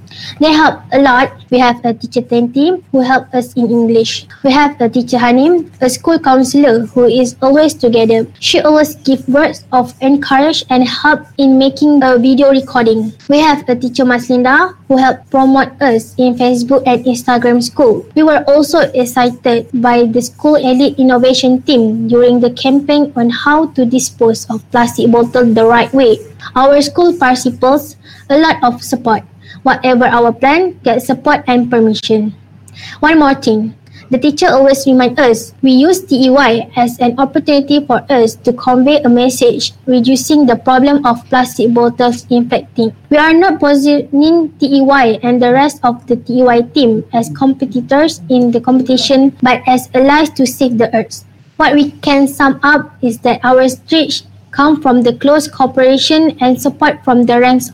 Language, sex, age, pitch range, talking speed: English, female, 20-39, 245-285 Hz, 165 wpm